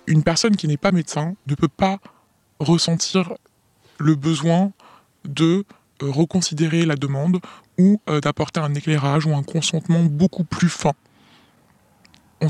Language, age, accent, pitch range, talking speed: French, 20-39, French, 145-180 Hz, 130 wpm